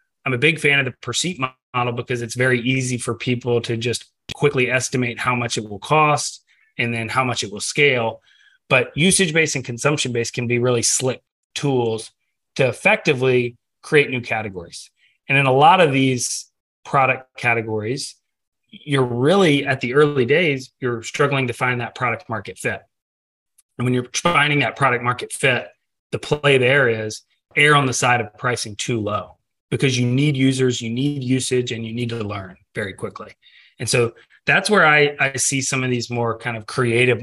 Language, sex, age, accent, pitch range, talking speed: English, male, 30-49, American, 115-135 Hz, 185 wpm